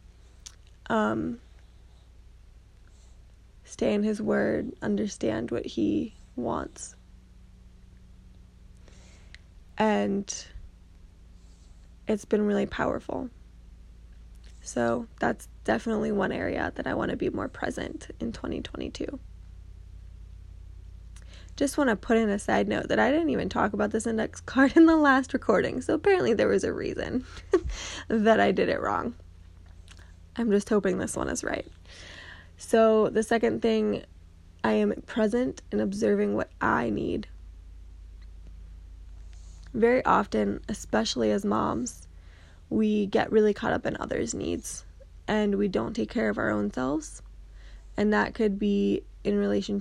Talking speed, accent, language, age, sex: 130 wpm, American, English, 10-29, female